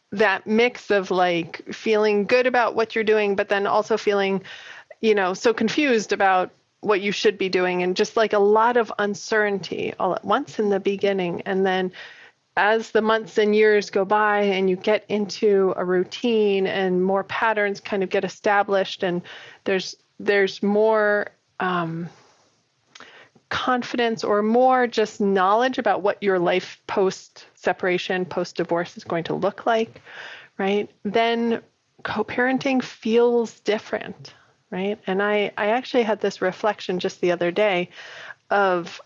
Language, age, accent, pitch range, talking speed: English, 30-49, American, 190-225 Hz, 155 wpm